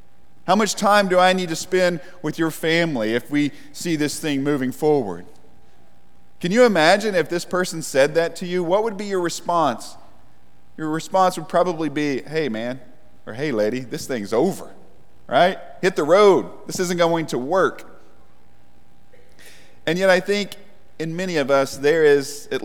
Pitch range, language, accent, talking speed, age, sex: 145-185 Hz, English, American, 175 wpm, 40-59, male